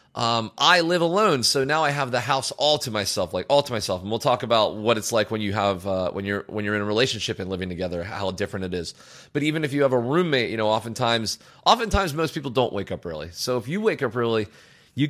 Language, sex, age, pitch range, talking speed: English, male, 30-49, 115-155 Hz, 260 wpm